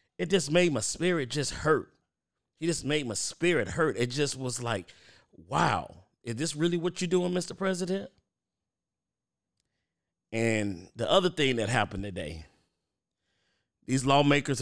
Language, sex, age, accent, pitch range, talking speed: English, male, 40-59, American, 115-160 Hz, 145 wpm